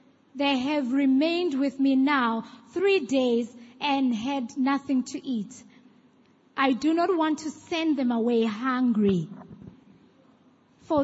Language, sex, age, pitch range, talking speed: English, female, 20-39, 235-285 Hz, 125 wpm